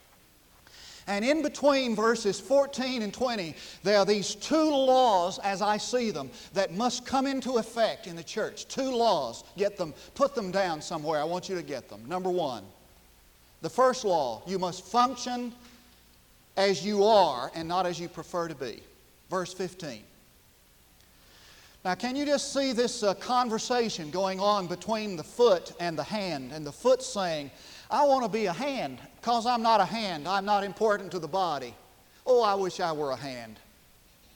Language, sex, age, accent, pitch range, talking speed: English, male, 40-59, American, 180-235 Hz, 180 wpm